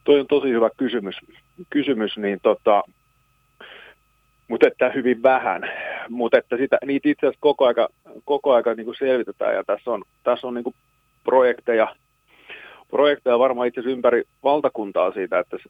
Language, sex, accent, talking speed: Finnish, male, native, 140 wpm